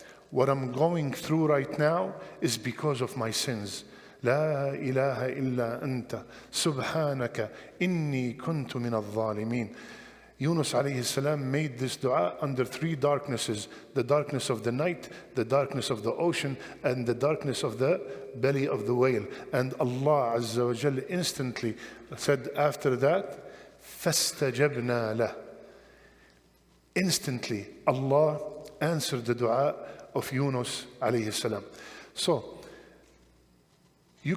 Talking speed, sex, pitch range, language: 105 wpm, male, 125-155 Hz, English